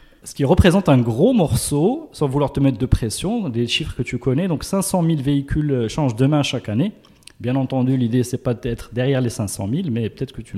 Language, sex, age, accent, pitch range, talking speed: French, male, 30-49, French, 125-155 Hz, 225 wpm